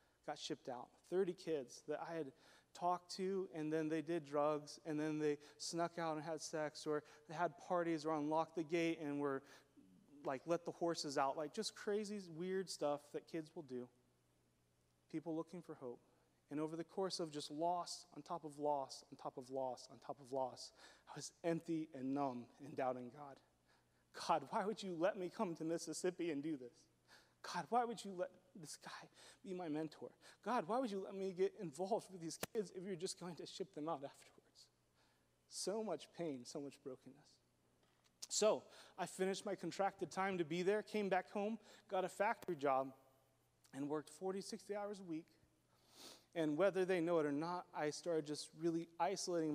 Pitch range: 145-180 Hz